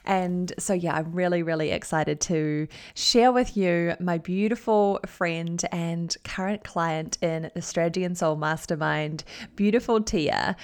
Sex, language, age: female, English, 20-39